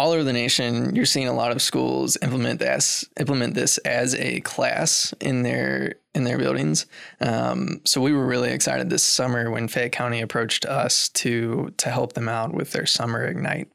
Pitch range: 115-130 Hz